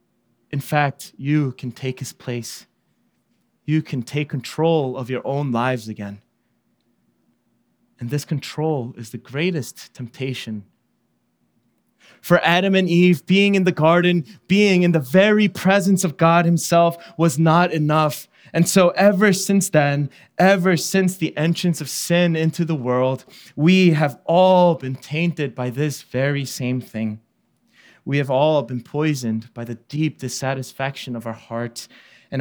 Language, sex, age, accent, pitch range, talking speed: English, male, 20-39, American, 125-165 Hz, 145 wpm